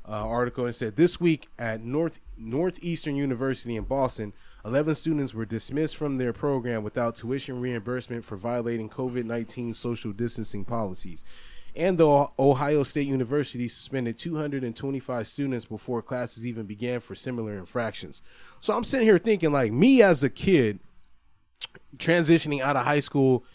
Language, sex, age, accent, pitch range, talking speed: English, male, 20-39, American, 120-155 Hz, 150 wpm